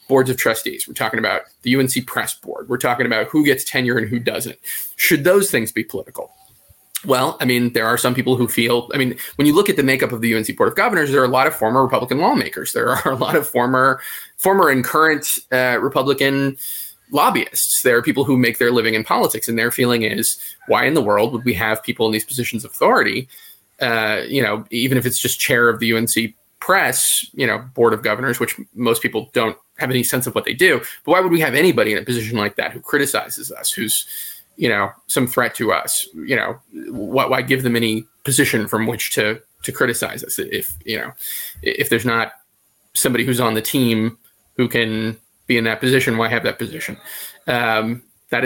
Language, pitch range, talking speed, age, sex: English, 115-130 Hz, 220 wpm, 20-39, male